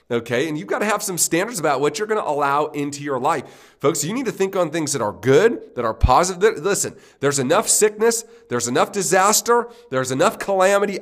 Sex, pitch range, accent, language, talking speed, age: male, 135-180 Hz, American, English, 220 wpm, 40-59